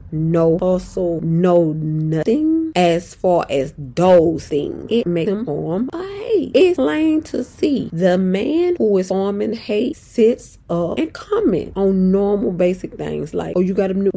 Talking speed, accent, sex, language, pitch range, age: 160 wpm, American, female, English, 165-210 Hz, 20-39